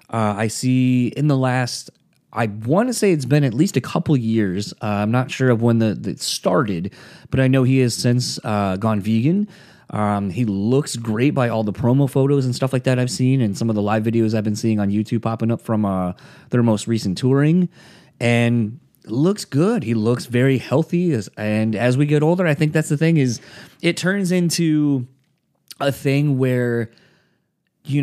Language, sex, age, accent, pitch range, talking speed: English, male, 20-39, American, 110-140 Hz, 200 wpm